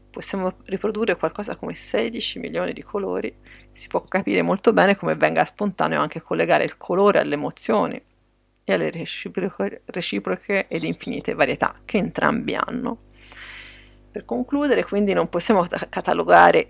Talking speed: 140 wpm